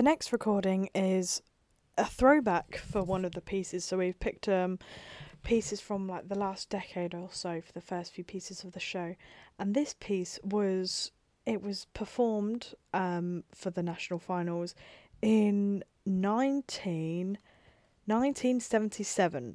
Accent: British